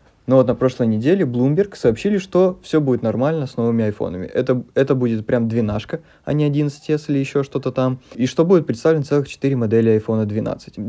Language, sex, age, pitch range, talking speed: Russian, male, 20-39, 115-145 Hz, 195 wpm